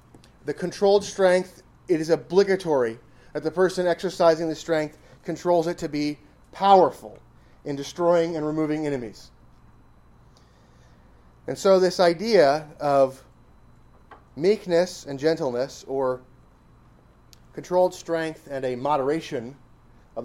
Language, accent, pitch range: English, American, 135-185 Hz